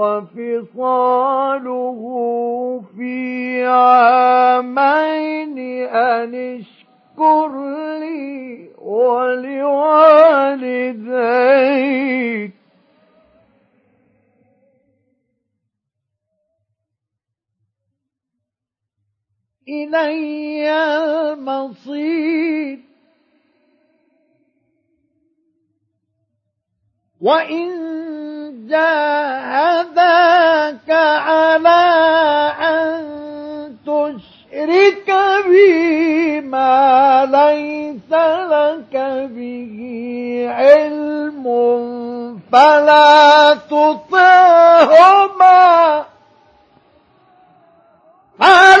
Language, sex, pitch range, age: Arabic, male, 245-315 Hz, 50-69